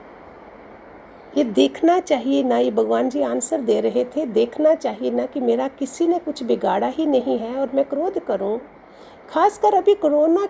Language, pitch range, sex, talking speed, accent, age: Hindi, 255-330 Hz, female, 170 wpm, native, 50-69